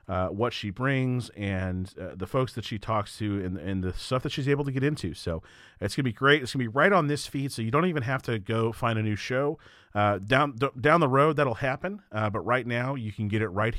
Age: 40-59